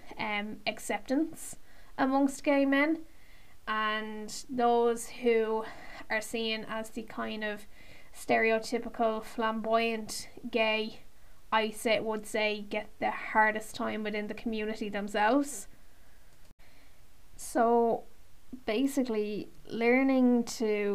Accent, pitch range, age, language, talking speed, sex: Irish, 215-250 Hz, 10-29, English, 95 wpm, female